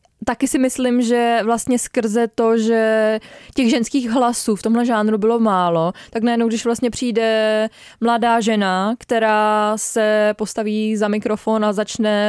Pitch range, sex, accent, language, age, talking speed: 205-240 Hz, female, native, Czech, 20-39, 145 wpm